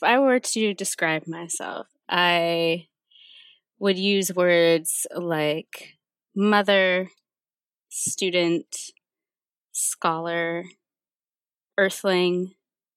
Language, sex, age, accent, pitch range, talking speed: English, female, 20-39, American, 160-195 Hz, 70 wpm